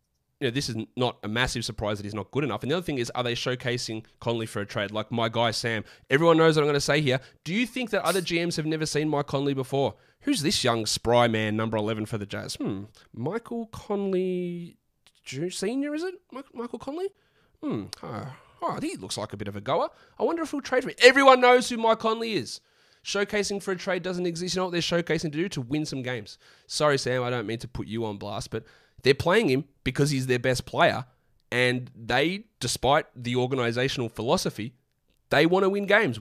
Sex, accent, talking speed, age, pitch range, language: male, Australian, 230 wpm, 20-39, 115-170 Hz, English